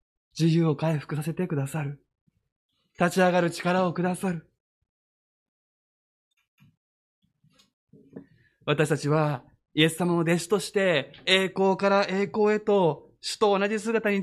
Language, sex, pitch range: Japanese, male, 150-215 Hz